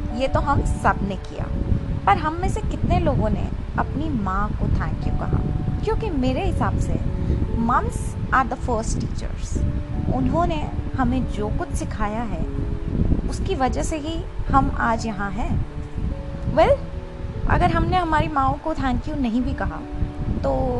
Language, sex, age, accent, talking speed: Hindi, female, 20-39, native, 160 wpm